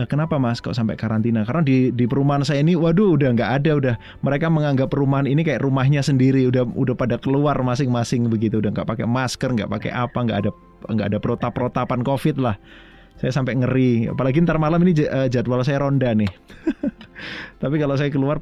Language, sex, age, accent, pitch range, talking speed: Indonesian, male, 20-39, native, 110-140 Hz, 190 wpm